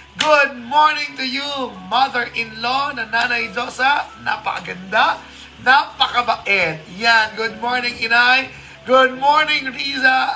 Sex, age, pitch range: male, 20-39, 230-260 Hz